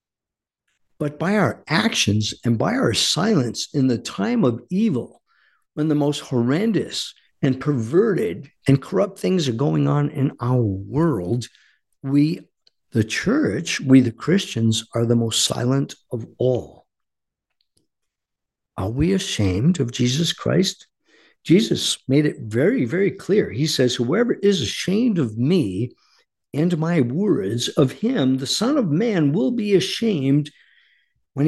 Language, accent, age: English, American, 50-69